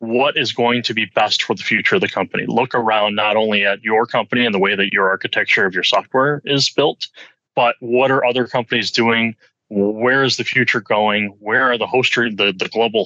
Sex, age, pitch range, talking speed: male, 20-39, 110-135 Hz, 220 wpm